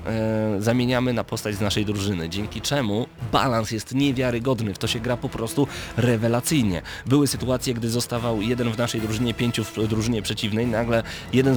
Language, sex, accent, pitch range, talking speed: Polish, male, native, 105-125 Hz, 165 wpm